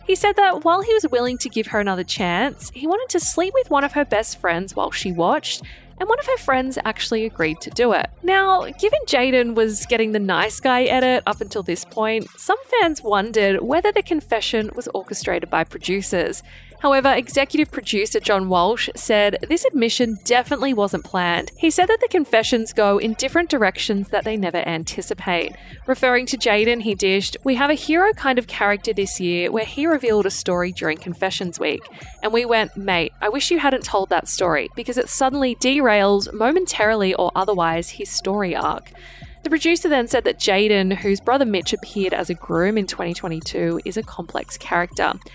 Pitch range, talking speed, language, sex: 195-270 Hz, 190 wpm, English, female